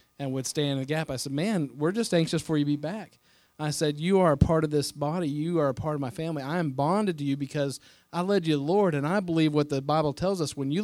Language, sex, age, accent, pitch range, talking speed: English, male, 40-59, American, 145-170 Hz, 305 wpm